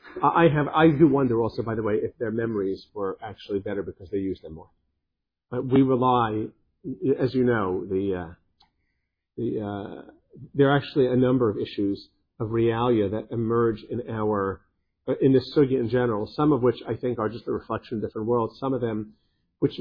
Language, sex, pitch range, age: English, male, 105-130 Hz, 50-69